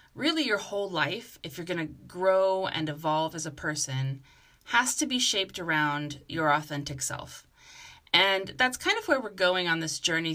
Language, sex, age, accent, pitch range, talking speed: English, female, 30-49, American, 150-200 Hz, 185 wpm